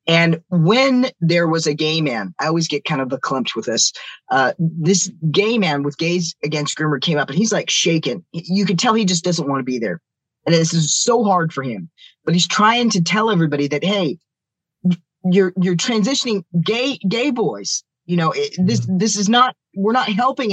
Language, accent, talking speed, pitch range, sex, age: English, American, 210 wpm, 155-190 Hz, male, 10-29